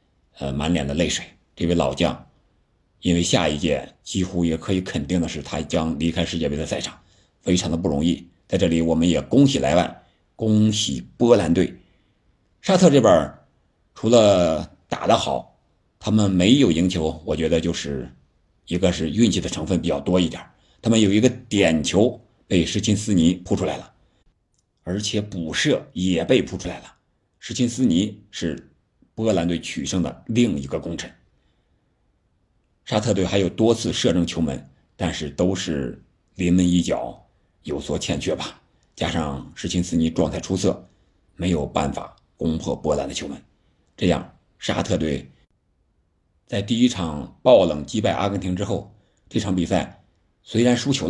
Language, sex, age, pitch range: Chinese, male, 50-69, 85-100 Hz